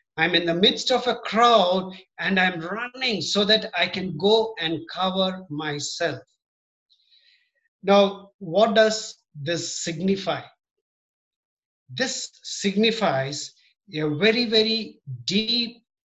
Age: 60-79